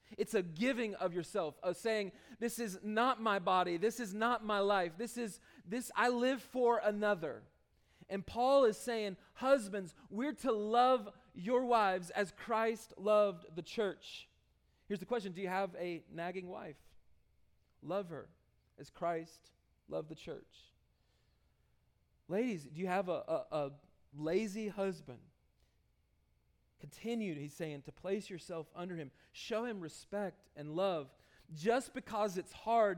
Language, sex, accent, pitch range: English, male, American, 180-240 Hz